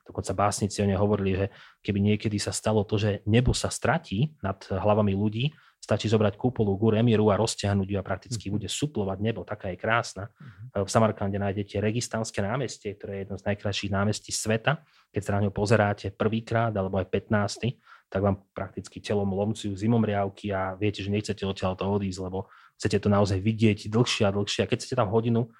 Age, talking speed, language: 30-49, 190 wpm, Slovak